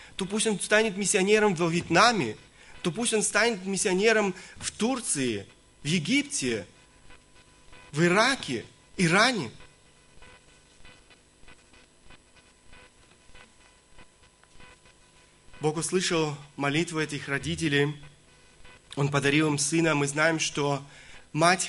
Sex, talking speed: male, 90 wpm